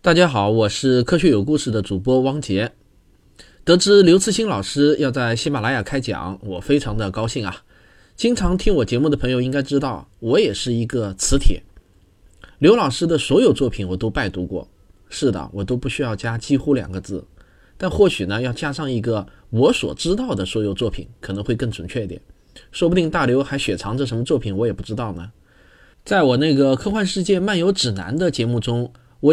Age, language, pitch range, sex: 20-39, Chinese, 110-150 Hz, male